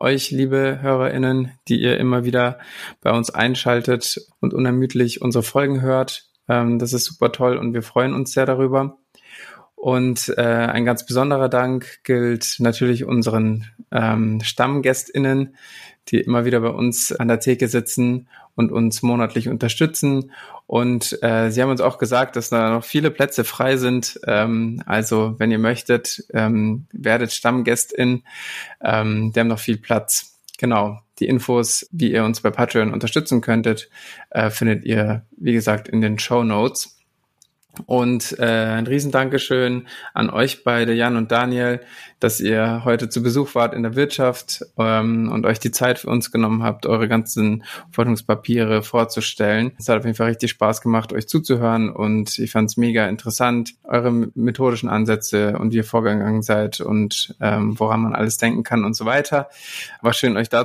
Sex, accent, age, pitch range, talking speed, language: male, German, 20-39, 115-125 Hz, 165 wpm, German